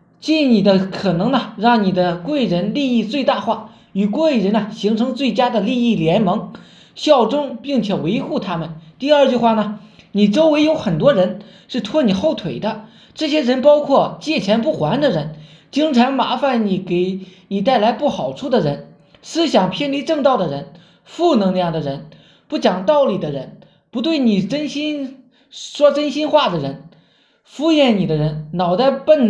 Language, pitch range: Chinese, 190-275 Hz